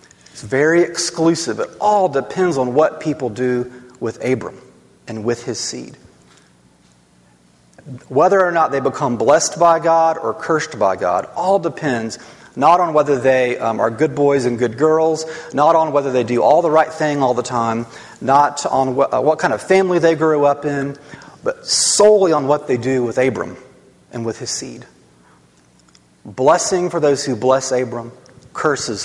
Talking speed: 170 wpm